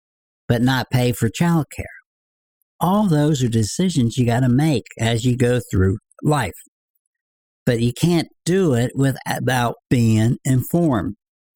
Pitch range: 110-145 Hz